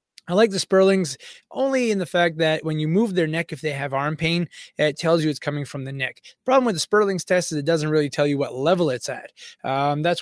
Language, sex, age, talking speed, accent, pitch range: English, male, 20-39, 265 wpm, American, 140-160 Hz